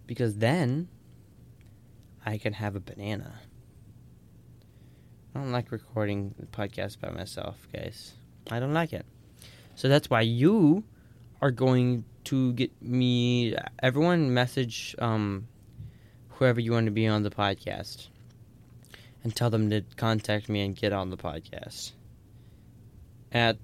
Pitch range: 105-120 Hz